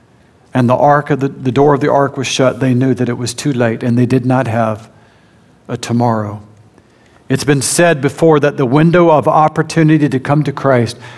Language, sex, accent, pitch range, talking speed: English, male, American, 120-145 Hz, 210 wpm